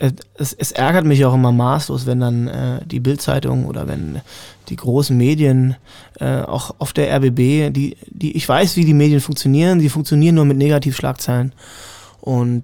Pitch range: 125-150 Hz